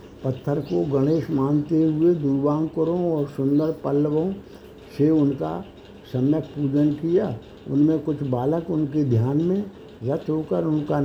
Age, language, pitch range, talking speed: 60-79, Hindi, 140-165 Hz, 130 wpm